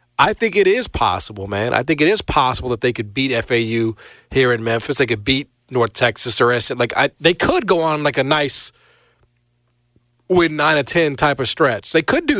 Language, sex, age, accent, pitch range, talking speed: English, male, 40-59, American, 115-155 Hz, 215 wpm